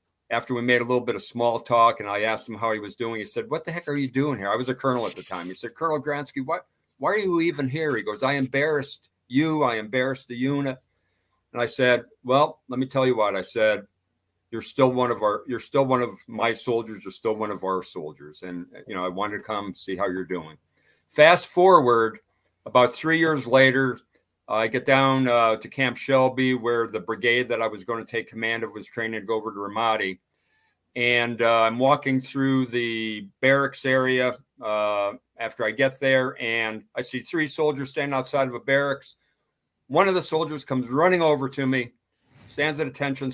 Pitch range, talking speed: 110-135 Hz, 215 wpm